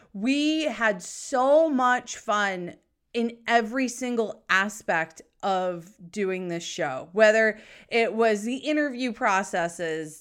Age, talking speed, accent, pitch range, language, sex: 30-49, 110 wpm, American, 185-240 Hz, English, female